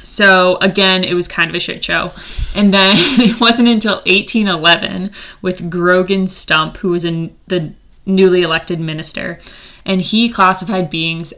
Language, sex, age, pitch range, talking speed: English, female, 20-39, 170-195 Hz, 150 wpm